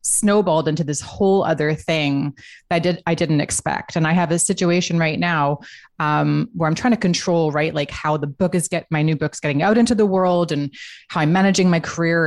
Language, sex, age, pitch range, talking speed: English, female, 30-49, 150-180 Hz, 225 wpm